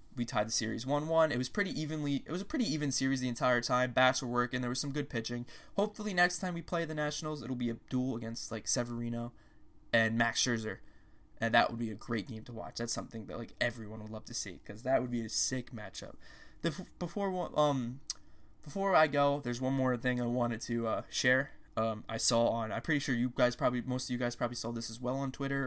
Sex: male